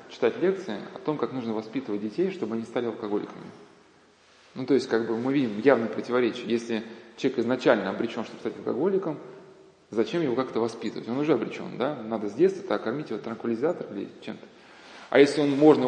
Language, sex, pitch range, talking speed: Russian, male, 110-140 Hz, 180 wpm